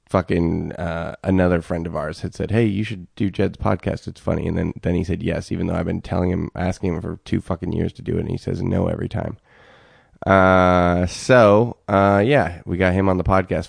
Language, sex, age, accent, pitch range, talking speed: English, male, 20-39, American, 85-100 Hz, 230 wpm